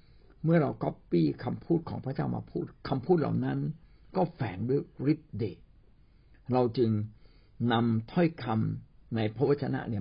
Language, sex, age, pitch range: Thai, male, 60-79, 110-155 Hz